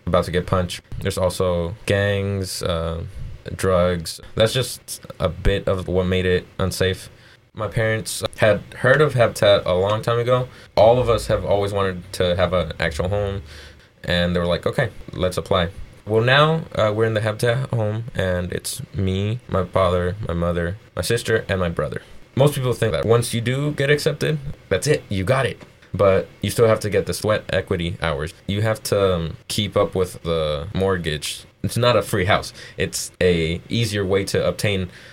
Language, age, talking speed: English, 20-39, 190 wpm